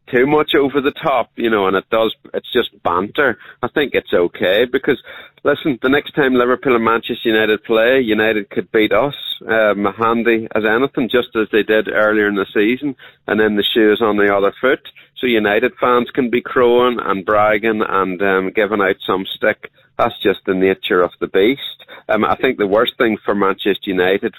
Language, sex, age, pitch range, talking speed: English, male, 30-49, 100-115 Hz, 200 wpm